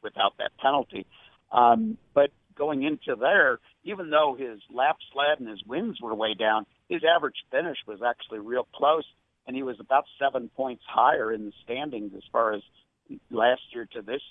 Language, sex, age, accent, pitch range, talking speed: English, male, 60-79, American, 110-145 Hz, 180 wpm